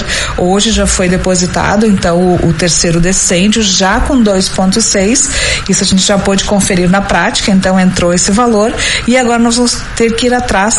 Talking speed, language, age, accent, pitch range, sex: 180 wpm, Portuguese, 40-59, Brazilian, 190-225 Hz, female